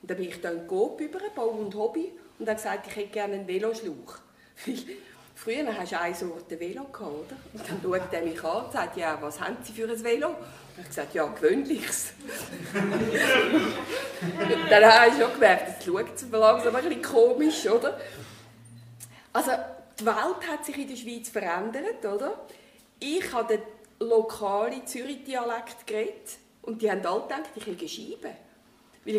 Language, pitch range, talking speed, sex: German, 205-260 Hz, 180 wpm, female